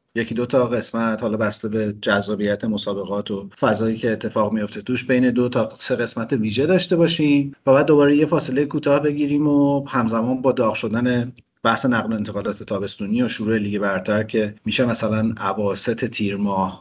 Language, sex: Persian, male